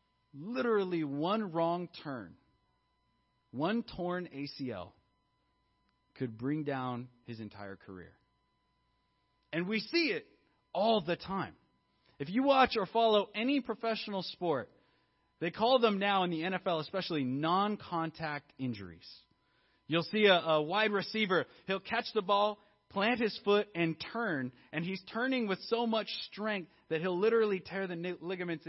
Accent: American